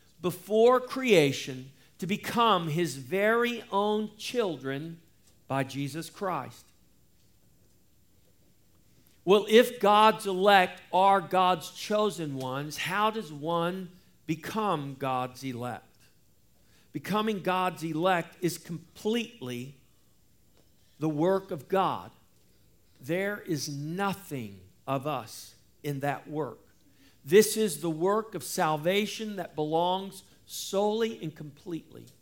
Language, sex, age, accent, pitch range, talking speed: English, male, 50-69, American, 140-195 Hz, 100 wpm